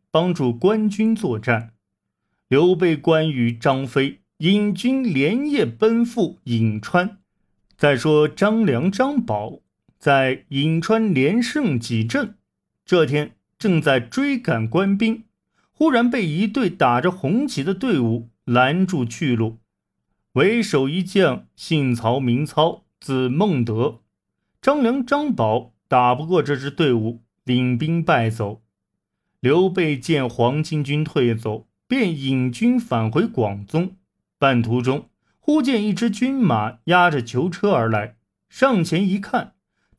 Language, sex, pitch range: Chinese, male, 120-205 Hz